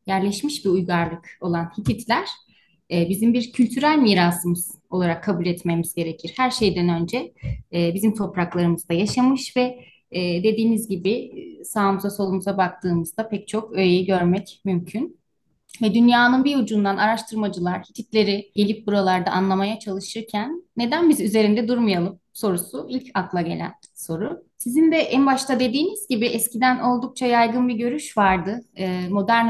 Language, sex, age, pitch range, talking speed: Turkish, female, 30-49, 190-250 Hz, 130 wpm